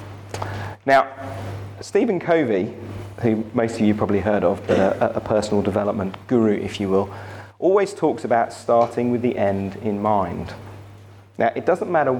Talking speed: 155 wpm